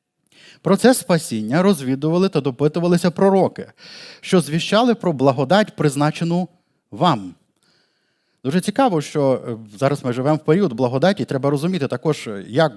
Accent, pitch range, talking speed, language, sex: native, 135-190 Hz, 120 wpm, Ukrainian, male